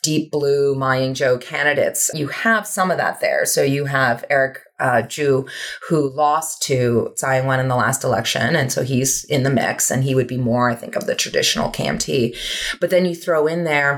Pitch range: 130-155 Hz